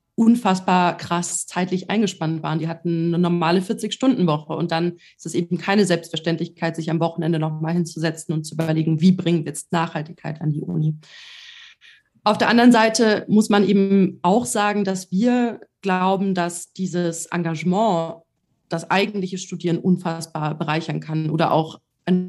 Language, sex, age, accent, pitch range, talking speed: German, female, 30-49, German, 165-195 Hz, 155 wpm